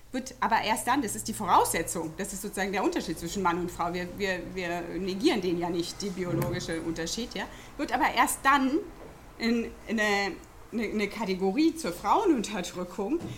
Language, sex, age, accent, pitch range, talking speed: German, female, 30-49, German, 195-275 Hz, 175 wpm